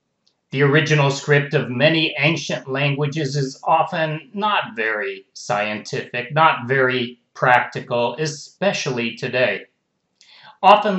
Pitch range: 130-170 Hz